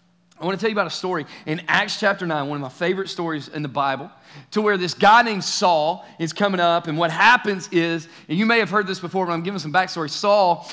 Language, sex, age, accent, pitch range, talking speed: English, male, 30-49, American, 155-190 Hz, 255 wpm